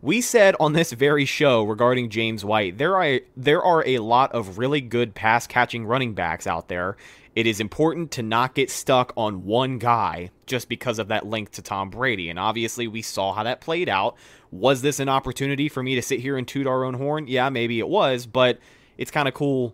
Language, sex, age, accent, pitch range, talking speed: English, male, 30-49, American, 110-140 Hz, 220 wpm